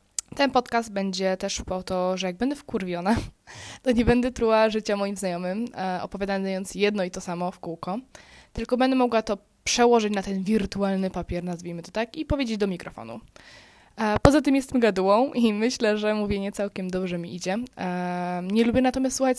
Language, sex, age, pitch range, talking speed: Polish, female, 20-39, 185-230 Hz, 175 wpm